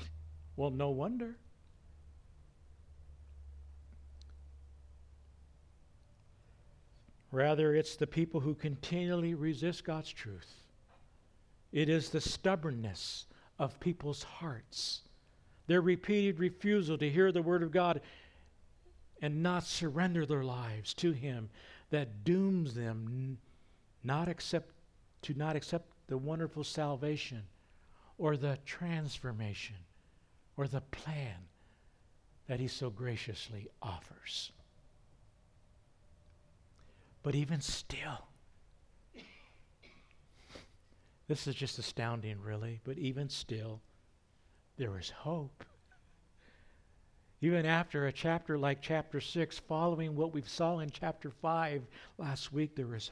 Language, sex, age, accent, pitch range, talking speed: English, male, 60-79, American, 95-155 Hz, 100 wpm